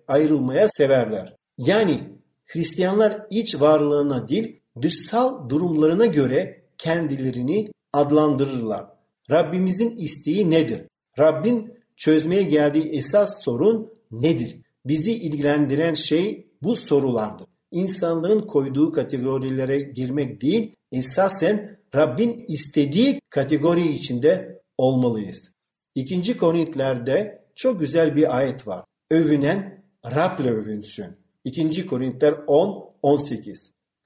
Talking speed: 90 wpm